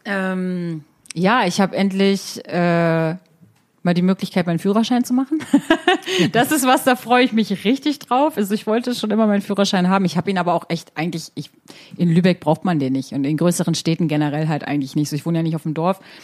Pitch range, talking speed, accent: 175-215 Hz, 220 wpm, German